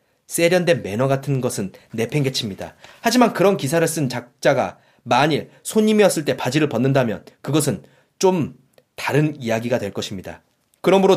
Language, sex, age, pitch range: Korean, male, 30-49, 115-165 Hz